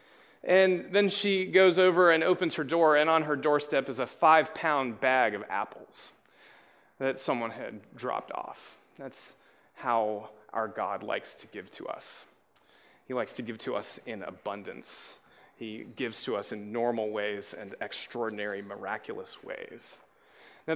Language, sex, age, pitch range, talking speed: English, male, 30-49, 135-190 Hz, 155 wpm